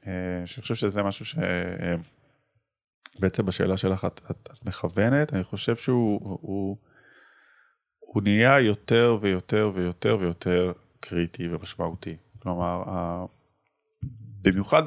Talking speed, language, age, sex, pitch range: 95 wpm, Hebrew, 30-49, male, 95-130 Hz